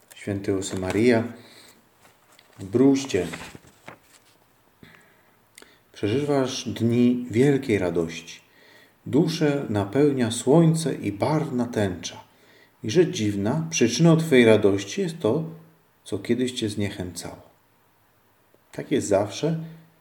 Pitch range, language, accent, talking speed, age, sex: 100-140 Hz, Polish, native, 85 wpm, 40-59, male